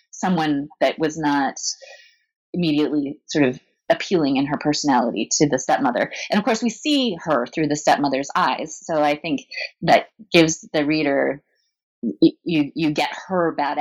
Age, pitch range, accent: 30-49, 150-205 Hz, American